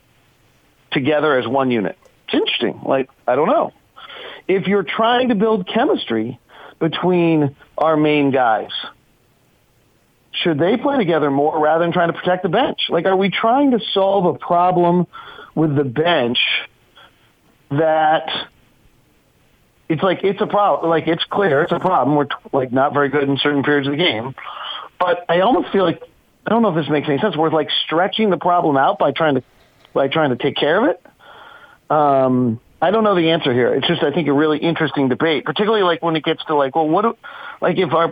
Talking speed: 190 wpm